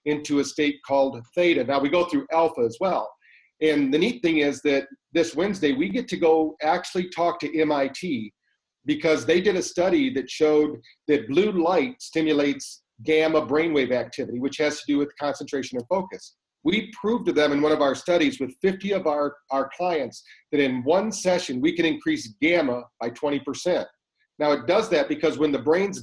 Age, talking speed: 40-59, 190 wpm